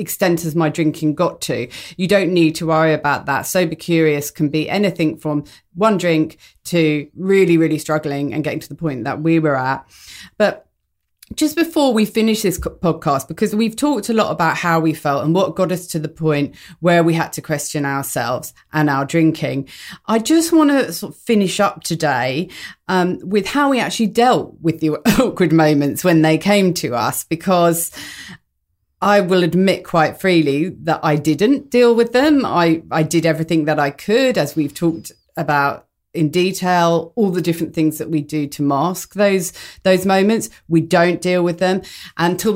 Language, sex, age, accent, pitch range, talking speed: English, female, 30-49, British, 150-185 Hz, 185 wpm